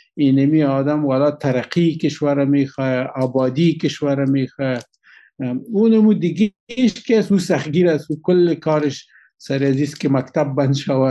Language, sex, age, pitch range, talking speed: Persian, male, 50-69, 135-195 Hz, 130 wpm